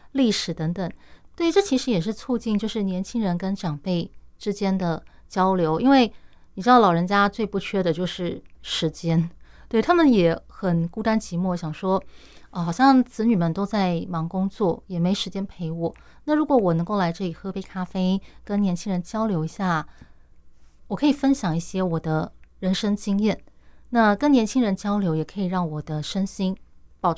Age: 30-49